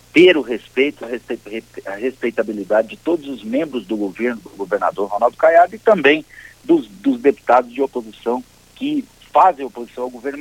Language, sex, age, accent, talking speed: Portuguese, male, 50-69, Brazilian, 155 wpm